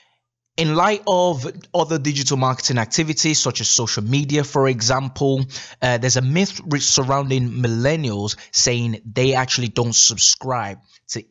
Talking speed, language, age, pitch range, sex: 135 wpm, English, 20-39, 110-135 Hz, male